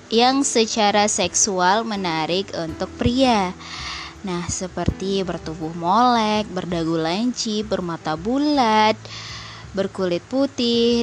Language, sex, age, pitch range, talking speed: Indonesian, female, 20-39, 180-245 Hz, 85 wpm